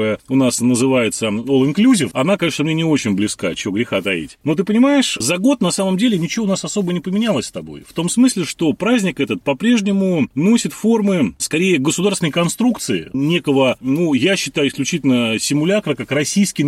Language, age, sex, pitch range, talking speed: Russian, 30-49, male, 125-175 Hz, 180 wpm